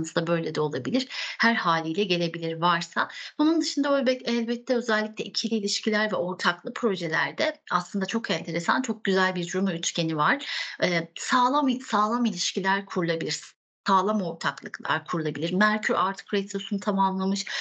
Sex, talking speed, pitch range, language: female, 130 wpm, 180-225 Hz, Turkish